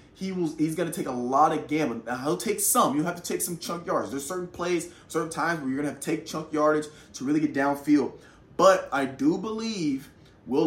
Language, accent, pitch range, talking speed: English, American, 155-205 Hz, 240 wpm